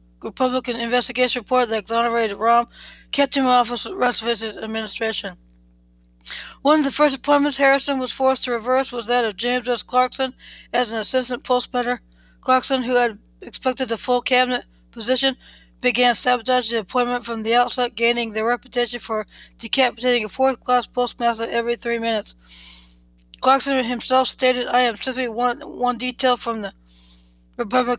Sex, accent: female, American